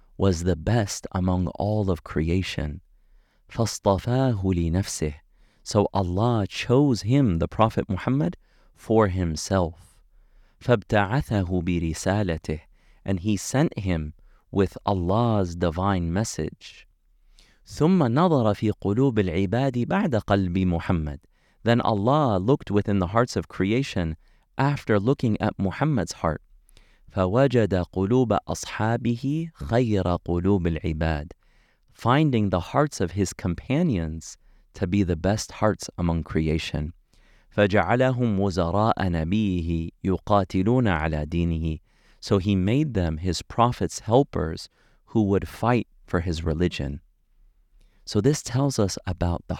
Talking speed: 100 wpm